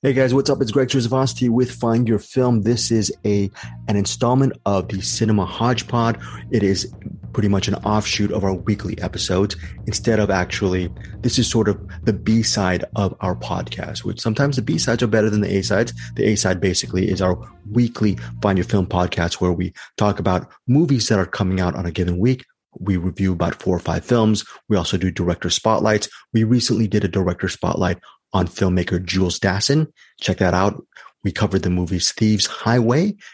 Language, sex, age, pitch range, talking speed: English, male, 30-49, 90-110 Hz, 185 wpm